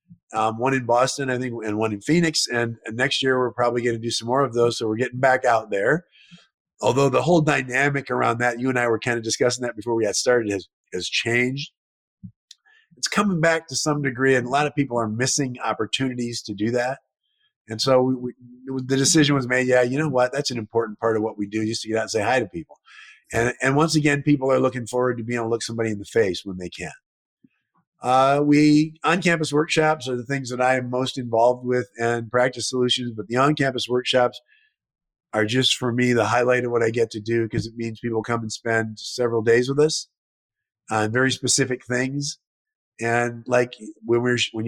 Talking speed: 225 wpm